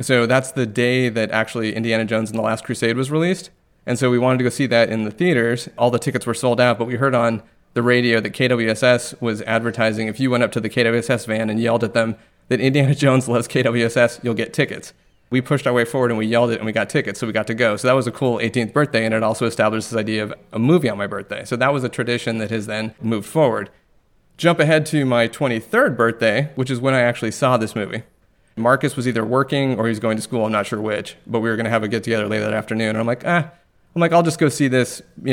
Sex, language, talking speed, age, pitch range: male, English, 270 wpm, 30-49, 110-130 Hz